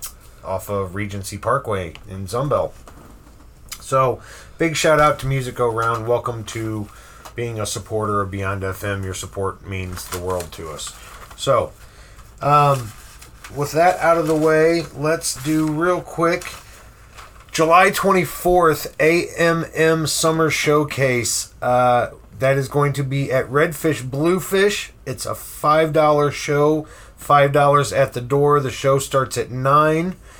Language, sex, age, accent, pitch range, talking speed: English, male, 30-49, American, 110-150 Hz, 135 wpm